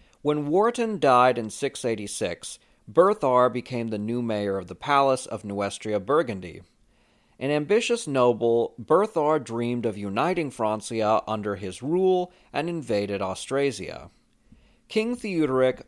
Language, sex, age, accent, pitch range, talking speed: English, male, 40-59, American, 110-165 Hz, 120 wpm